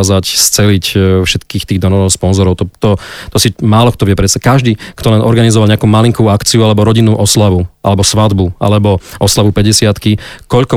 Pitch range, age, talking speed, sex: 95-110 Hz, 40-59, 165 wpm, male